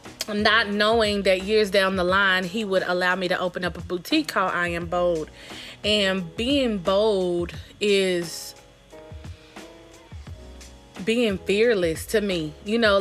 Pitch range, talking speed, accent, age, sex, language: 175-205 Hz, 140 wpm, American, 20-39, female, English